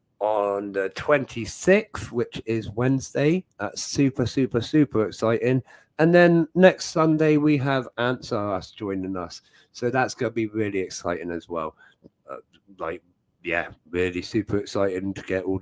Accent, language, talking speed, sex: British, English, 155 wpm, male